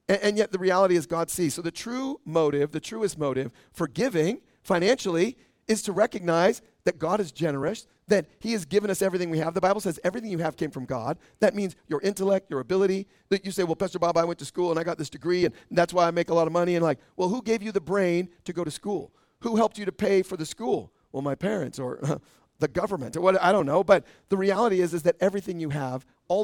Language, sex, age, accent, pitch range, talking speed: English, male, 40-59, American, 165-200 Hz, 255 wpm